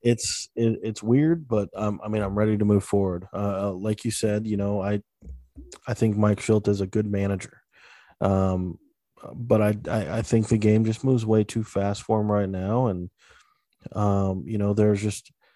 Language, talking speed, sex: English, 195 wpm, male